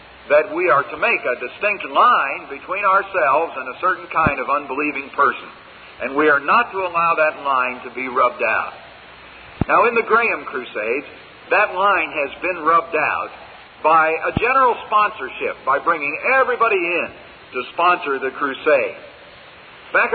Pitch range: 145-240 Hz